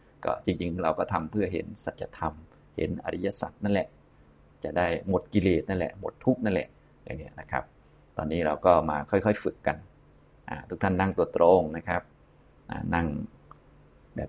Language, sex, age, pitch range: Thai, male, 20-39, 85-105 Hz